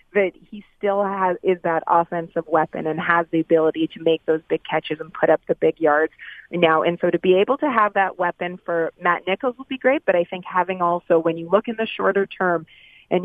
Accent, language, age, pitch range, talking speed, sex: American, English, 30-49, 170-195 Hz, 235 wpm, female